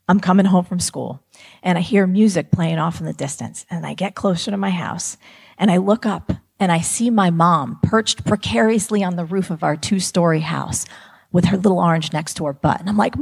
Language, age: English, 40-59